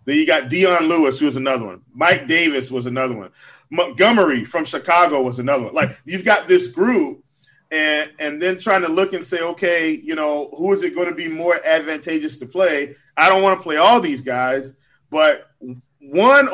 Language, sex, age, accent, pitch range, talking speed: English, male, 30-49, American, 140-185 Hz, 205 wpm